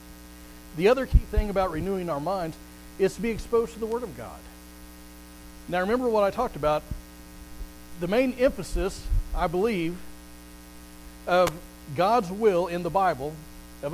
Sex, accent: male, American